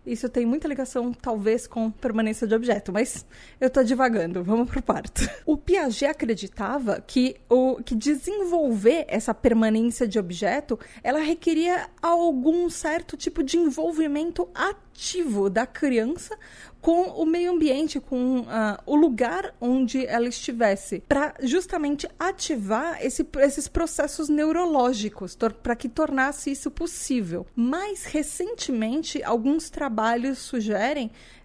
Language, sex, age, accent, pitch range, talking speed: Portuguese, female, 20-39, Brazilian, 235-310 Hz, 120 wpm